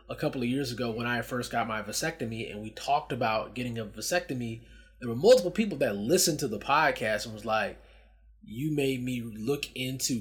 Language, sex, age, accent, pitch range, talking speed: English, male, 20-39, American, 115-135 Hz, 205 wpm